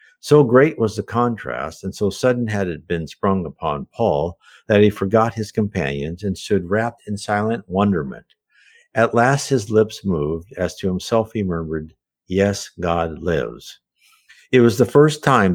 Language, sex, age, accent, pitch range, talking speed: English, male, 60-79, American, 90-125 Hz, 165 wpm